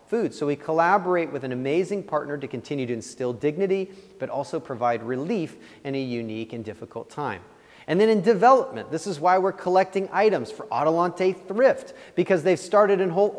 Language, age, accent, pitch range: English, 30-49, American, 135-205 Hz